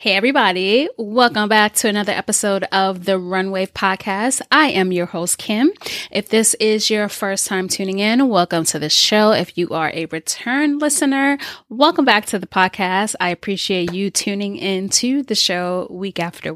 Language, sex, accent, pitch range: English, female, American, 180-245 Hz